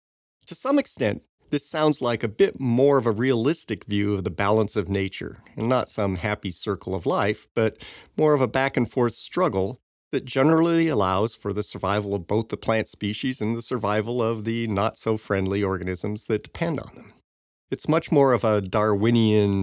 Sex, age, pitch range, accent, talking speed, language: male, 40-59, 100-125 Hz, American, 180 wpm, English